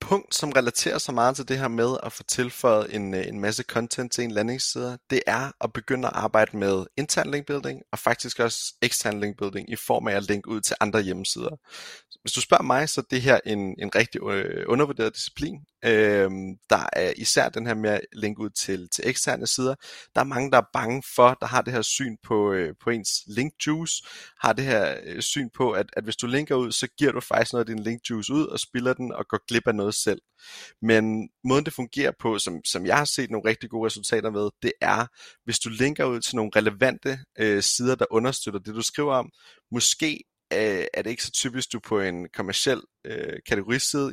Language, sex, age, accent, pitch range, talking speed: Danish, male, 30-49, native, 105-130 Hz, 220 wpm